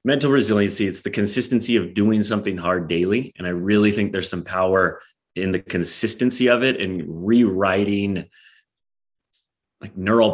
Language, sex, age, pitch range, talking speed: English, male, 30-49, 90-110 Hz, 150 wpm